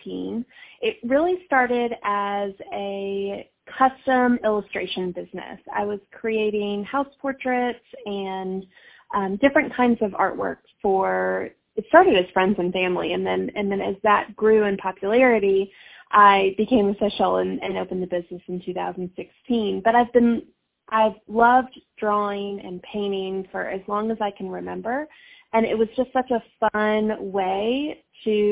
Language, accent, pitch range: English, American, 195-235 Hz